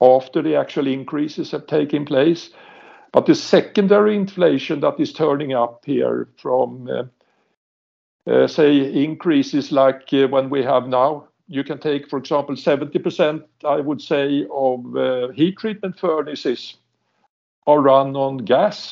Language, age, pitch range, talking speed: English, 60-79, 140-190 Hz, 145 wpm